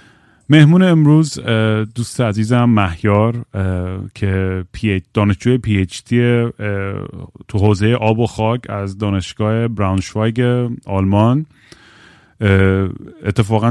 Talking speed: 85 wpm